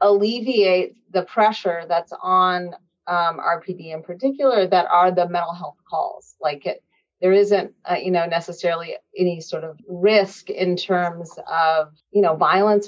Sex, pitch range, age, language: female, 175-205 Hz, 30-49, English